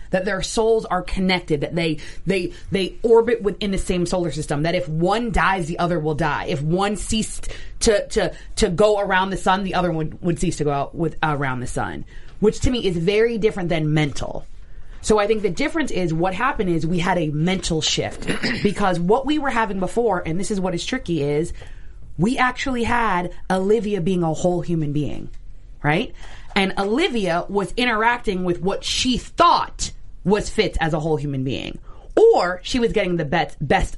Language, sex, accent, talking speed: English, female, American, 200 wpm